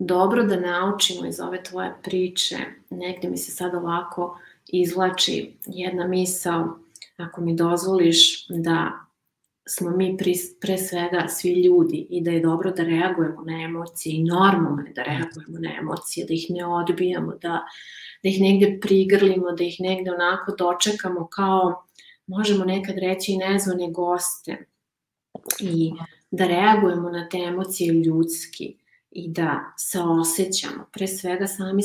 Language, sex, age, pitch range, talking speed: English, female, 30-49, 170-190 Hz, 140 wpm